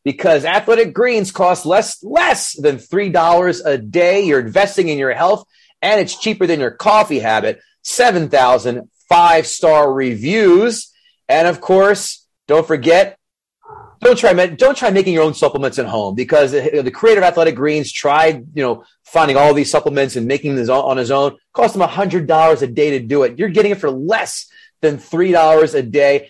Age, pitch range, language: 30-49, 150-225 Hz, English